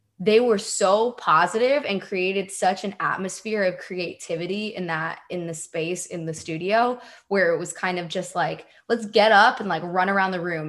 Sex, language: female, English